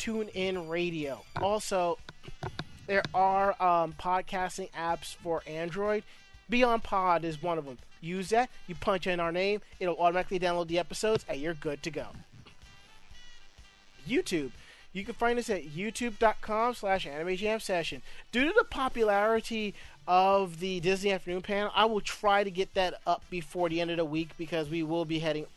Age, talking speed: 30-49, 170 wpm